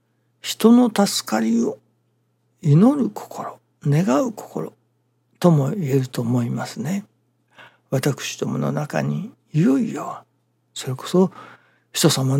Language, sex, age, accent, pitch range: Japanese, male, 60-79, native, 125-190 Hz